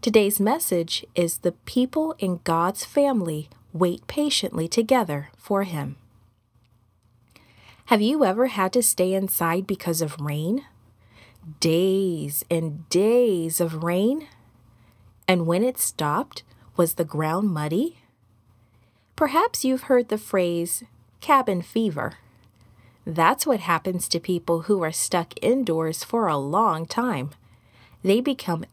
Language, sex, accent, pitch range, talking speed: English, female, American, 145-225 Hz, 120 wpm